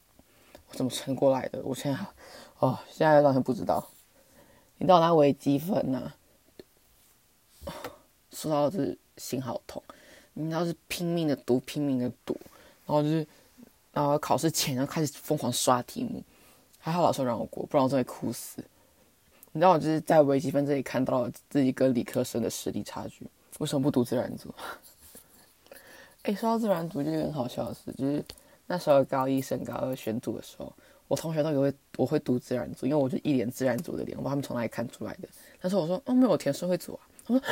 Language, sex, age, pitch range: Chinese, female, 20-39, 140-230 Hz